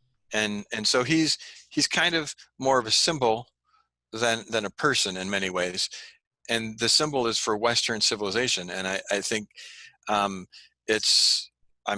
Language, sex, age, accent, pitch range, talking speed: English, male, 40-59, American, 105-125 Hz, 160 wpm